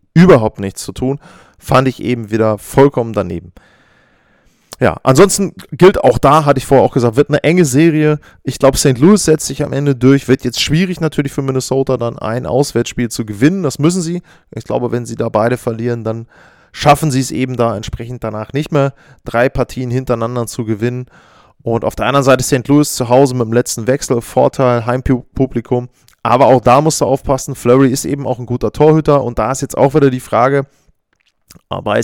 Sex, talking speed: male, 200 wpm